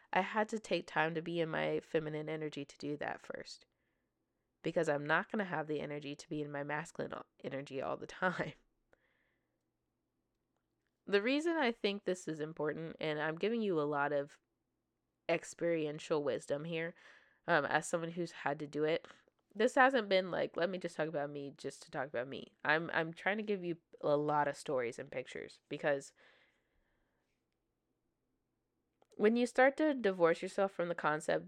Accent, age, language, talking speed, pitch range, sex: American, 20-39, English, 180 wpm, 145-180 Hz, female